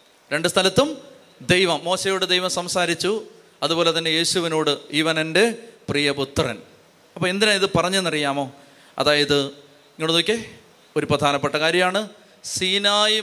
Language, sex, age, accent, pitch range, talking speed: Malayalam, male, 30-49, native, 165-225 Hz, 100 wpm